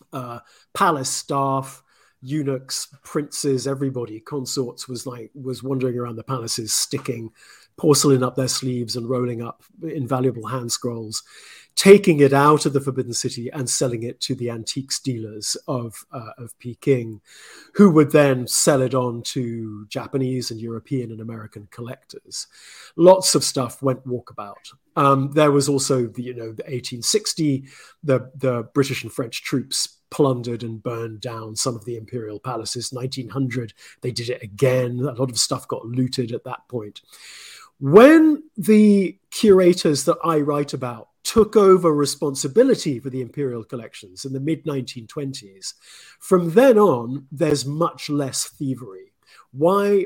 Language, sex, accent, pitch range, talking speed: English, male, British, 120-150 Hz, 150 wpm